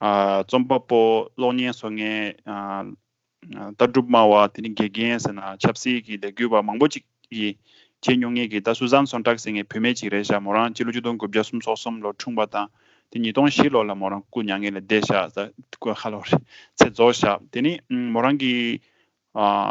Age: 20-39